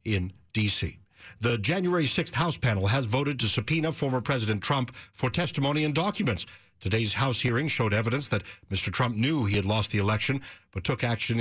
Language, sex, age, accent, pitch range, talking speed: English, male, 60-79, American, 105-140 Hz, 185 wpm